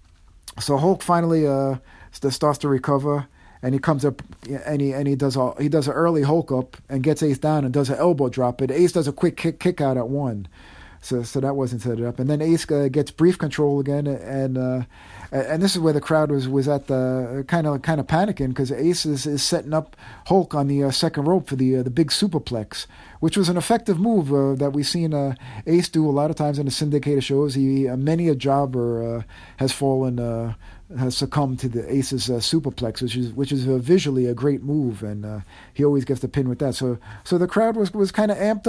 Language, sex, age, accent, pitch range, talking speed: English, male, 40-59, American, 130-165 Hz, 240 wpm